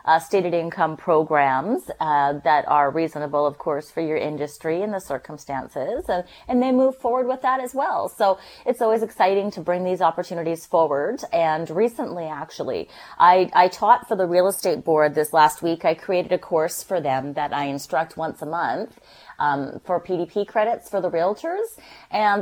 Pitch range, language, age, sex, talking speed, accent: 160-205 Hz, English, 30-49, female, 180 wpm, American